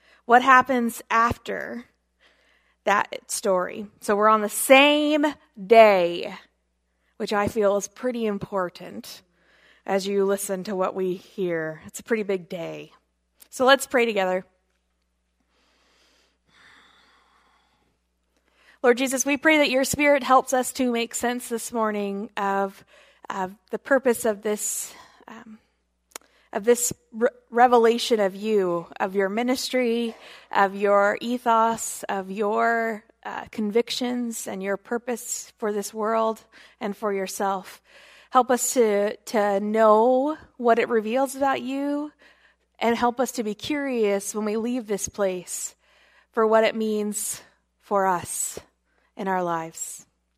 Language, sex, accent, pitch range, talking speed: English, female, American, 195-245 Hz, 130 wpm